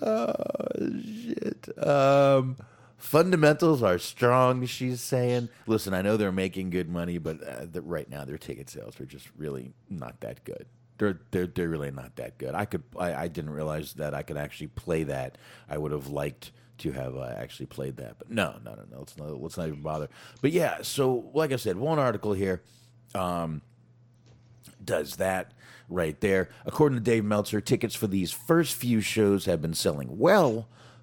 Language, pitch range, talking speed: English, 85-125 Hz, 190 wpm